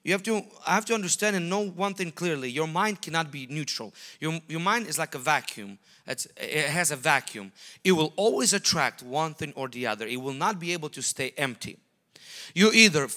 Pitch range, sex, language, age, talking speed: 155-205 Hz, male, English, 30-49, 210 wpm